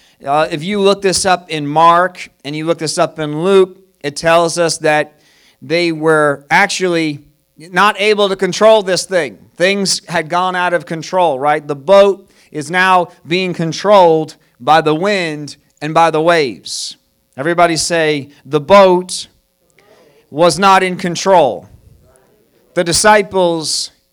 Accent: American